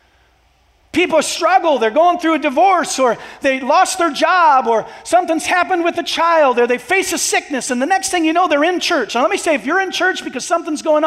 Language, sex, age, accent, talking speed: English, male, 40-59, American, 235 wpm